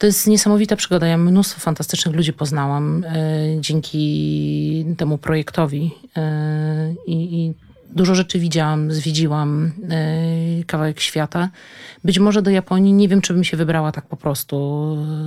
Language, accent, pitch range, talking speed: Polish, native, 155-175 Hz, 125 wpm